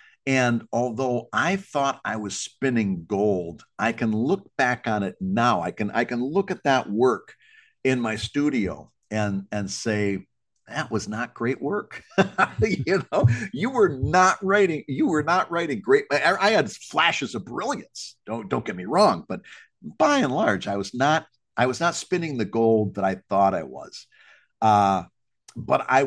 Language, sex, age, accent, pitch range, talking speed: English, male, 50-69, American, 100-135 Hz, 175 wpm